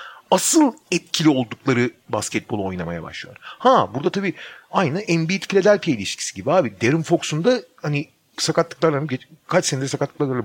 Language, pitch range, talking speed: Turkish, 130-200 Hz, 130 wpm